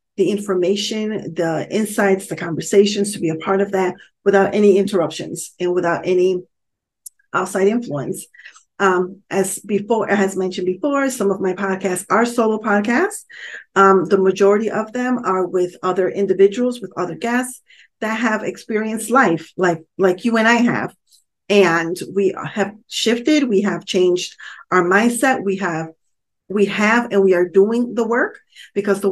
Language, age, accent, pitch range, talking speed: English, 40-59, American, 185-220 Hz, 155 wpm